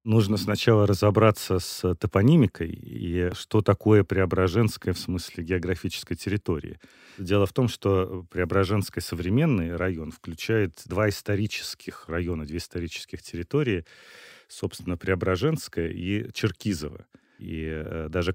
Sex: male